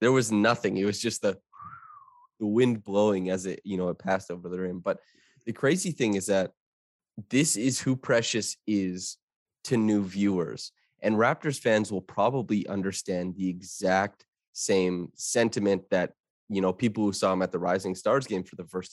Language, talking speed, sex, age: English, 185 wpm, male, 20-39